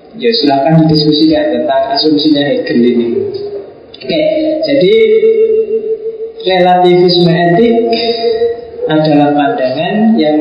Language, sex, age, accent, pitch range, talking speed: Indonesian, male, 20-39, native, 155-225 Hz, 90 wpm